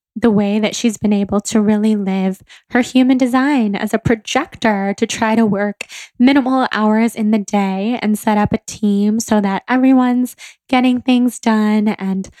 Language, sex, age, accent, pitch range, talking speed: English, female, 10-29, American, 210-245 Hz, 175 wpm